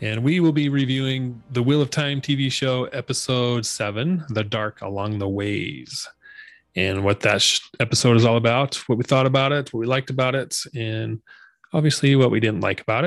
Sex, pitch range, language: male, 115-140 Hz, English